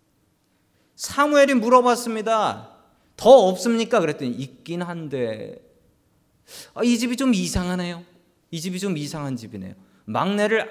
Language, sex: Korean, male